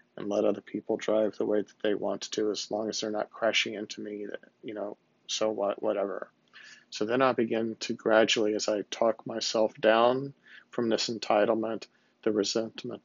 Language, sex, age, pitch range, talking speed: English, male, 40-59, 105-120 Hz, 185 wpm